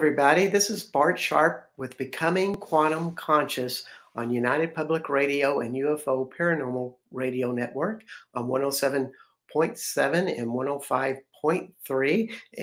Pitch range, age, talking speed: 130-155 Hz, 60-79, 100 wpm